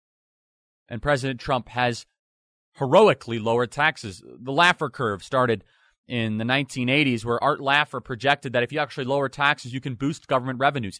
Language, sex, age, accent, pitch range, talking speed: English, male, 30-49, American, 105-140 Hz, 160 wpm